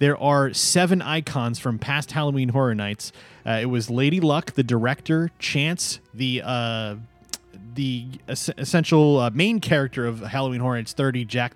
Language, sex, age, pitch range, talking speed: English, male, 30-49, 120-160 Hz, 160 wpm